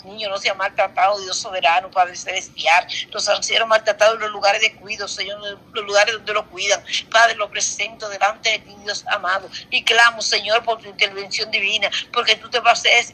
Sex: female